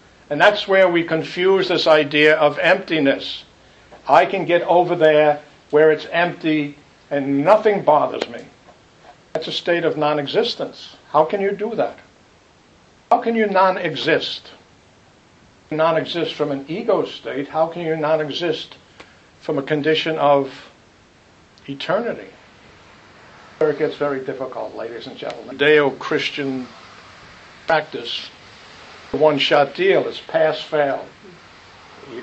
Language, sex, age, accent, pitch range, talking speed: English, male, 60-79, American, 140-165 Hz, 125 wpm